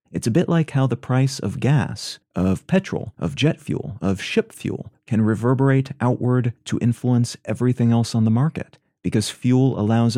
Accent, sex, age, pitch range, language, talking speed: American, male, 30-49, 110-135 Hz, English, 175 wpm